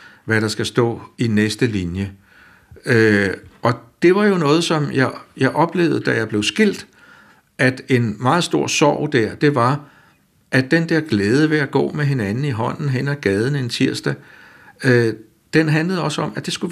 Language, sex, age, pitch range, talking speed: Danish, male, 60-79, 115-150 Hz, 185 wpm